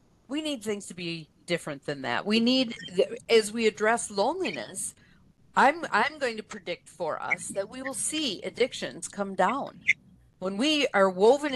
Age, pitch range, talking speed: 50-69, 195-270 Hz, 165 wpm